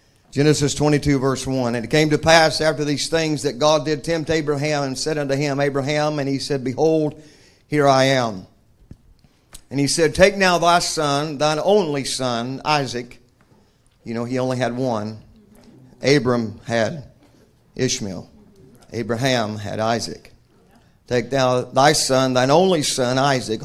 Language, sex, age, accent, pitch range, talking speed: English, male, 50-69, American, 120-150 Hz, 150 wpm